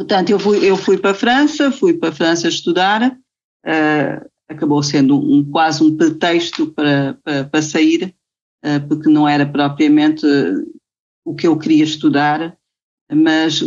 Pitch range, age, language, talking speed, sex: 160-220 Hz, 50-69, Portuguese, 135 wpm, female